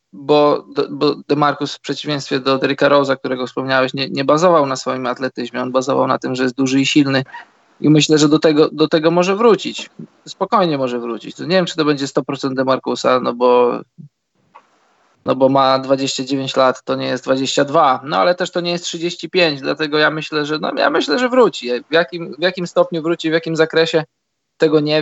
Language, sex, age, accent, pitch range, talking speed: Polish, male, 20-39, native, 140-170 Hz, 200 wpm